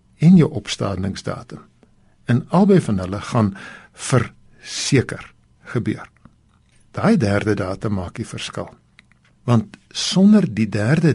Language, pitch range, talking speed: Dutch, 105-145 Hz, 110 wpm